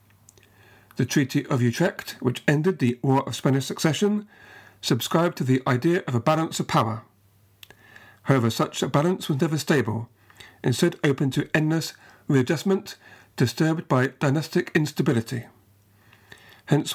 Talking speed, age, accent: 130 wpm, 50-69, British